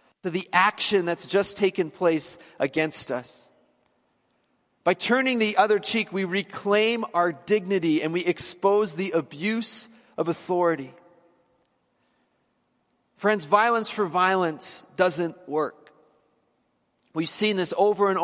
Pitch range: 170-210 Hz